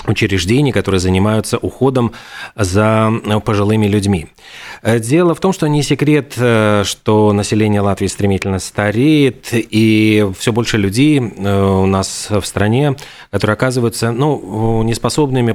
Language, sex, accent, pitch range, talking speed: Russian, male, native, 100-120 Hz, 115 wpm